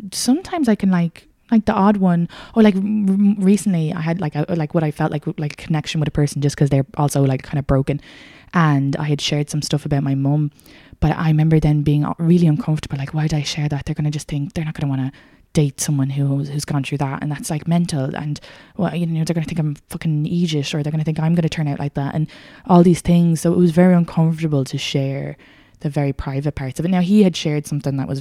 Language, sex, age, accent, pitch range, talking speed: English, female, 20-39, Irish, 135-160 Hz, 260 wpm